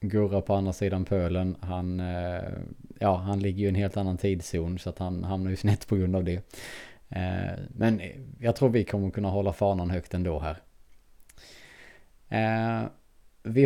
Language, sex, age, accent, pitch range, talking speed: Swedish, male, 20-39, Norwegian, 90-110 Hz, 165 wpm